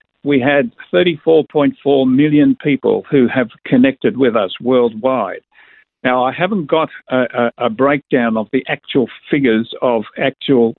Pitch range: 125-165 Hz